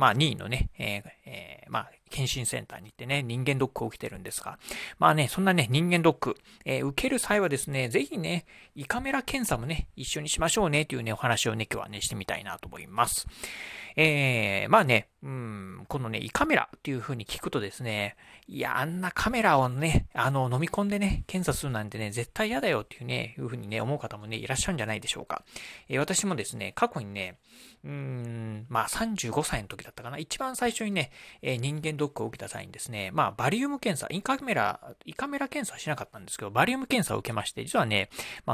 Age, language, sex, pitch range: 40-59, Japanese, male, 115-170 Hz